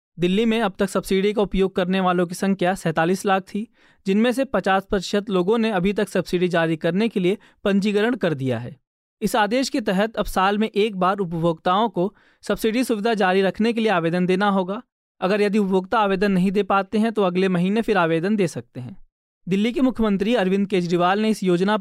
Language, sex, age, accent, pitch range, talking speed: Hindi, male, 20-39, native, 180-215 Hz, 205 wpm